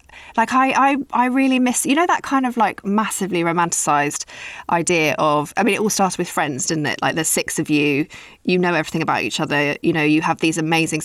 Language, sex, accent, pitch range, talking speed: English, female, British, 165-205 Hz, 225 wpm